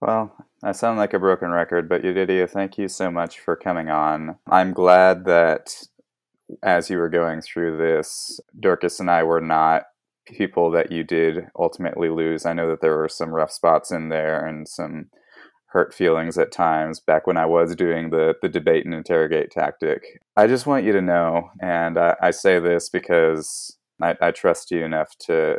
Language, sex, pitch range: English, male, 80-95 Hz